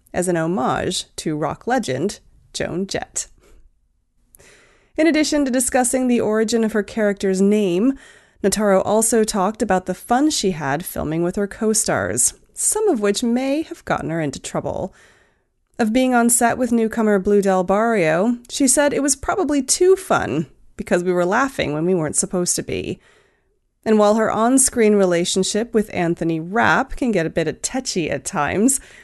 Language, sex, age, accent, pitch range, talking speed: English, female, 30-49, American, 180-265 Hz, 165 wpm